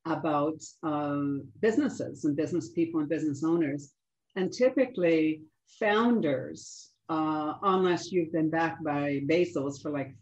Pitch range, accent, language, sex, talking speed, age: 145-175 Hz, American, English, female, 125 wpm, 50-69